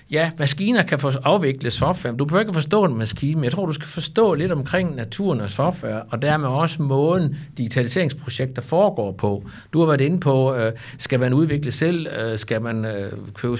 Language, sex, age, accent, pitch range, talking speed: Danish, male, 60-79, native, 120-160 Hz, 180 wpm